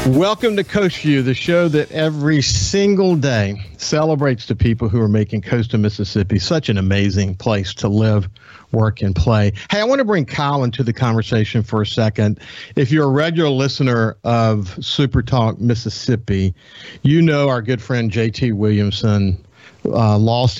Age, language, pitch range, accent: 50-69, English, 105-130 Hz, American